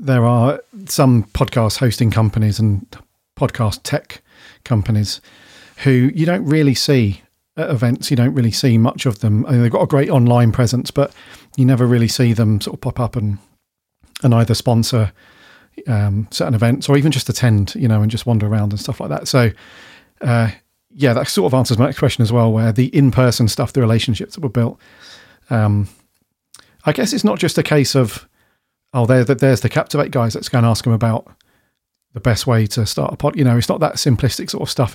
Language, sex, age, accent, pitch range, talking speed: English, male, 40-59, British, 115-135 Hz, 210 wpm